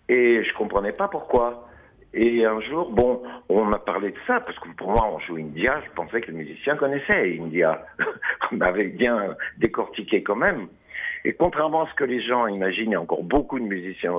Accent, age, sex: French, 60-79, male